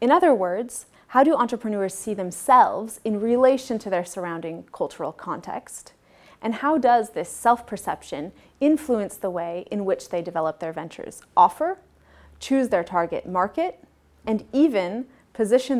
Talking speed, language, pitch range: 140 wpm, French, 185-245 Hz